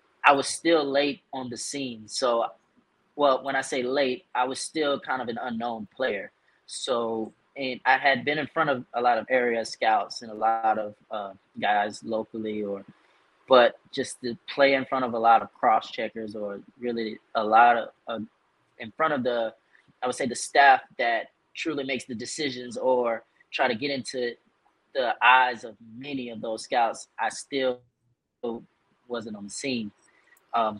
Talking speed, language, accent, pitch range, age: 180 wpm, English, American, 110-130 Hz, 20-39